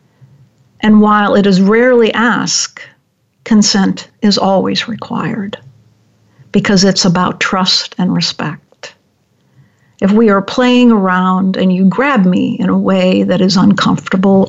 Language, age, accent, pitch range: English, 60-79, American, 180-220 Hz